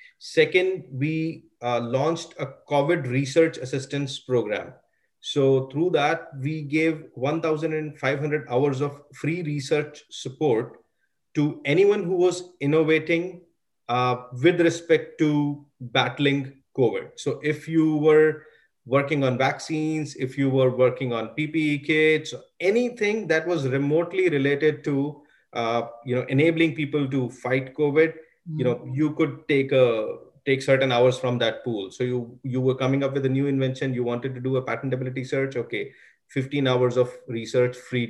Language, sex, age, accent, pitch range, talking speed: English, male, 30-49, Indian, 125-155 Hz, 150 wpm